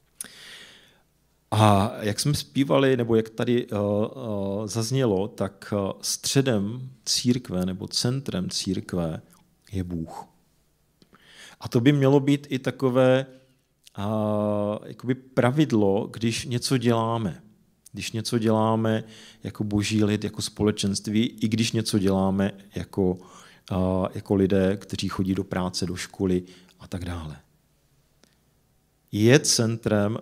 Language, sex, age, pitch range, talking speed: Czech, male, 40-59, 95-115 Hz, 105 wpm